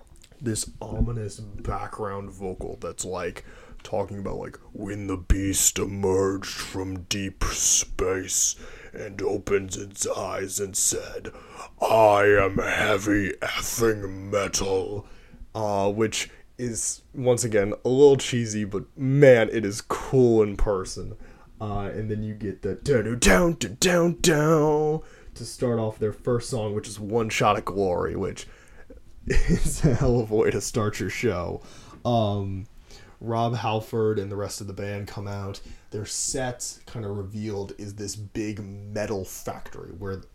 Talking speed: 145 wpm